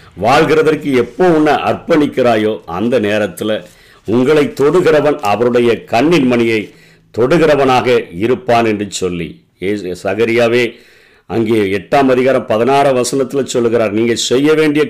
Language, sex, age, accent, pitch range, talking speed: Tamil, male, 50-69, native, 110-140 Hz, 100 wpm